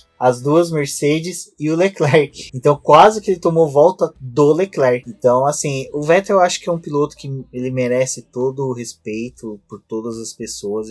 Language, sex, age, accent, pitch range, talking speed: Portuguese, male, 20-39, Brazilian, 115-145 Hz, 185 wpm